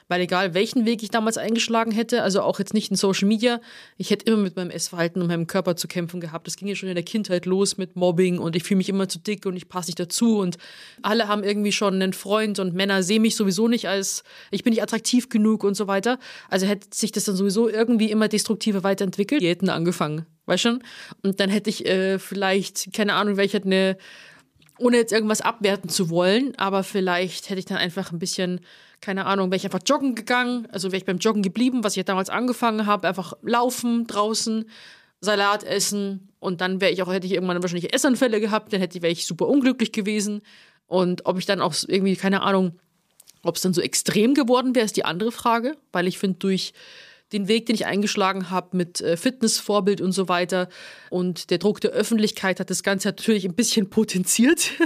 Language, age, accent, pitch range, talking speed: German, 20-39, German, 185-220 Hz, 220 wpm